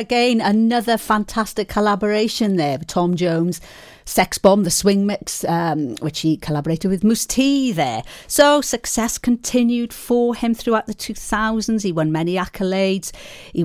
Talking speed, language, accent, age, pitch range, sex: 145 wpm, English, British, 40-59, 160-215 Hz, female